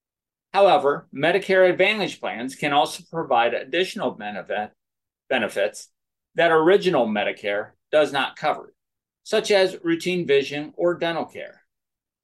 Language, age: English, 50-69